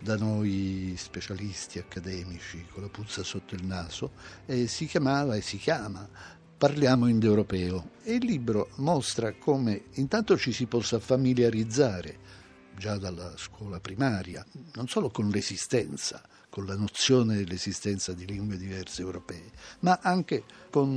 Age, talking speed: 60-79, 135 wpm